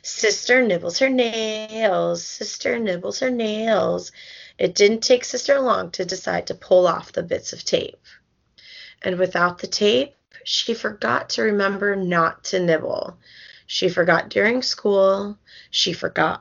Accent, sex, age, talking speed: American, female, 30-49, 145 wpm